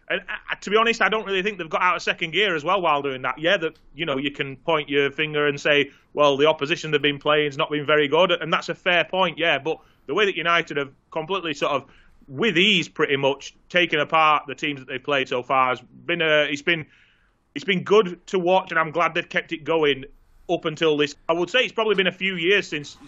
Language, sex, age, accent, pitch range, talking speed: English, male, 30-49, British, 140-175 Hz, 255 wpm